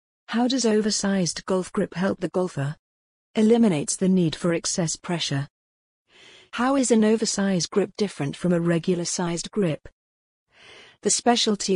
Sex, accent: female, British